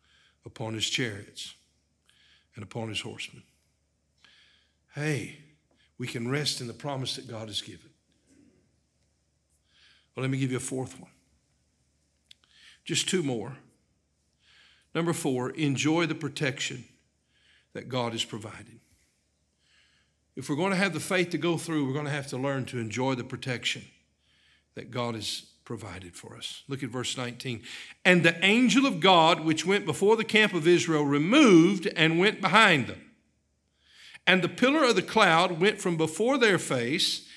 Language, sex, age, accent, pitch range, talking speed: English, male, 60-79, American, 115-170 Hz, 155 wpm